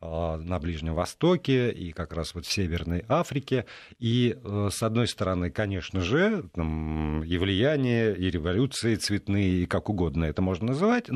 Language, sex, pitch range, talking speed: Russian, male, 90-120 Hz, 155 wpm